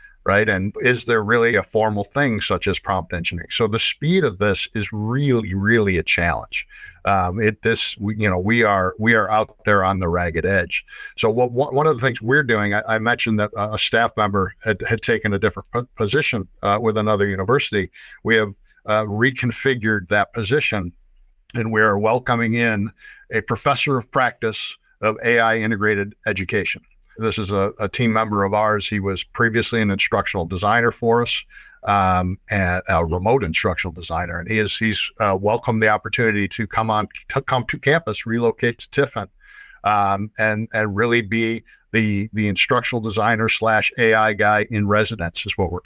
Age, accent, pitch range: 50-69, American, 100-115 Hz